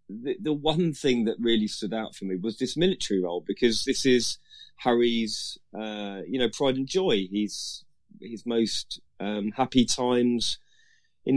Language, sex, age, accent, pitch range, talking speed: English, male, 30-49, British, 95-120 Hz, 165 wpm